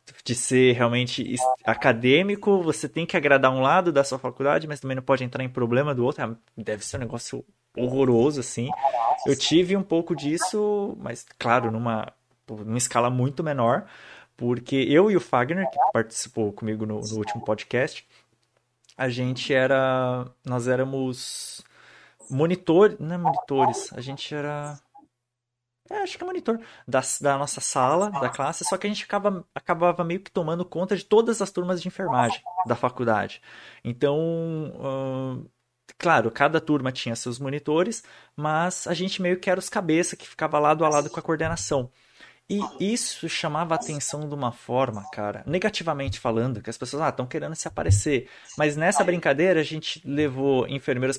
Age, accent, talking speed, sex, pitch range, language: 20-39, Brazilian, 165 wpm, male, 120-160 Hz, Portuguese